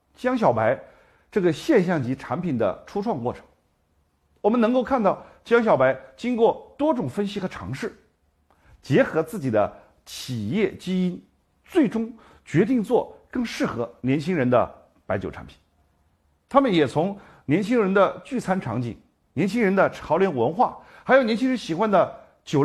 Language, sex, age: Chinese, male, 50-69